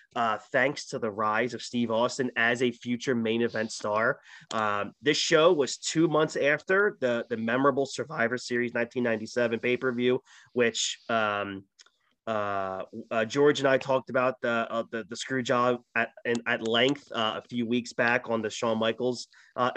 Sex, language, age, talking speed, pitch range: male, English, 30-49, 170 wpm, 115-130 Hz